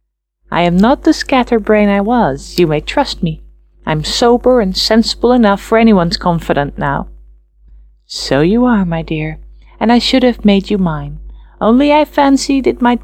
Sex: female